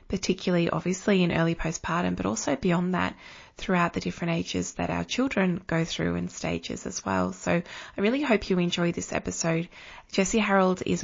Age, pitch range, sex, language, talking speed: 20-39, 165-195 Hz, female, English, 180 wpm